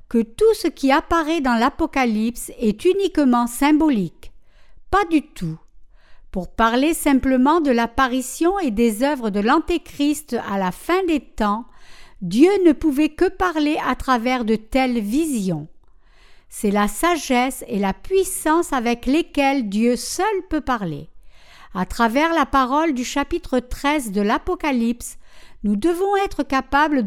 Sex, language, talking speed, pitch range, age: female, French, 140 wpm, 230-330 Hz, 60-79